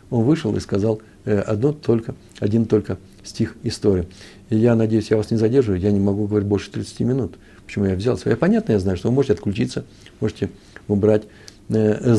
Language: Russian